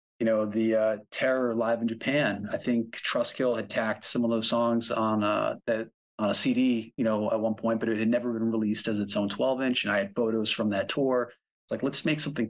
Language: English